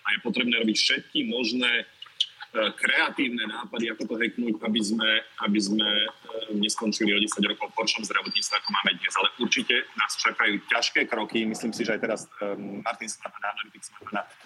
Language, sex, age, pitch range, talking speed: Slovak, male, 40-59, 105-120 Hz, 160 wpm